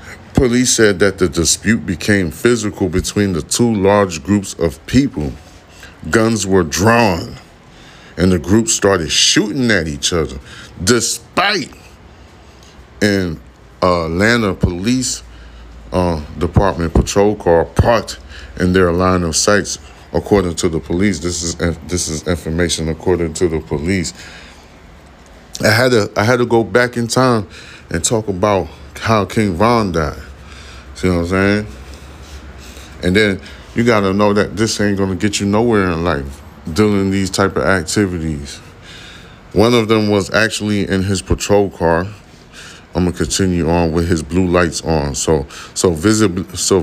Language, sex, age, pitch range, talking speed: English, male, 30-49, 80-105 Hz, 145 wpm